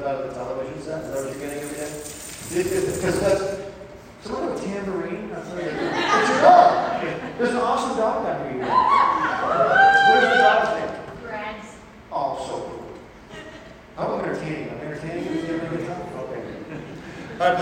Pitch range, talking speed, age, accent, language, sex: 150-200 Hz, 155 wpm, 40-59, American, English, male